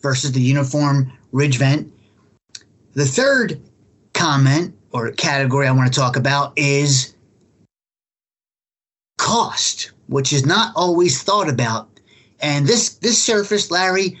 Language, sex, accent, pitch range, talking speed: English, male, American, 135-205 Hz, 120 wpm